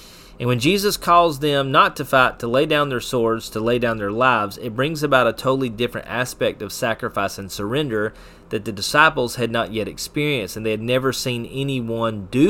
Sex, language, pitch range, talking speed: male, English, 110-155 Hz, 205 wpm